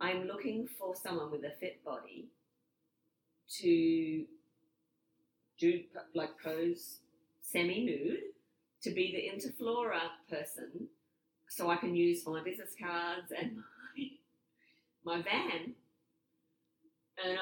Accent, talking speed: Australian, 105 wpm